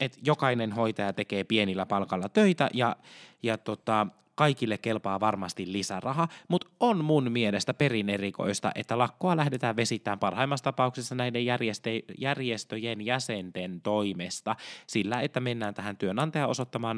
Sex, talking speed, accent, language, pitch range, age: male, 125 wpm, native, Finnish, 105-145 Hz, 20-39